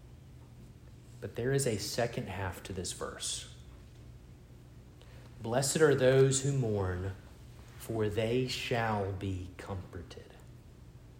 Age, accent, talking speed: 40-59, American, 100 wpm